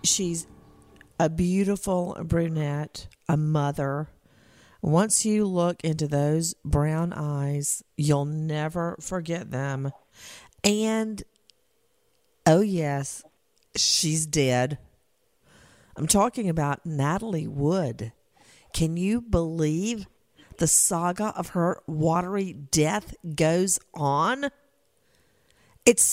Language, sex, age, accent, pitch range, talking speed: English, female, 50-69, American, 155-230 Hz, 90 wpm